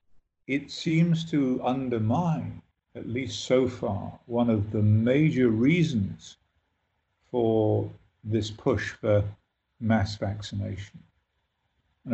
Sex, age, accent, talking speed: male, 50-69, British, 100 wpm